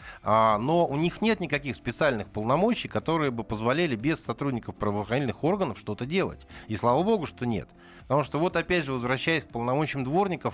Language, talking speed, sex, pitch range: Russian, 170 wpm, male, 110-150 Hz